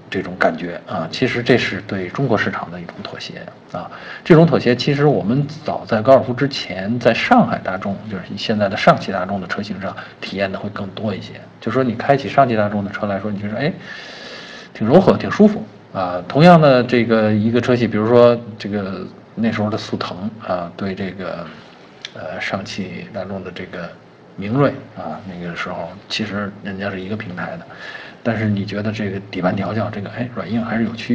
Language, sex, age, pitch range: Chinese, male, 50-69, 100-125 Hz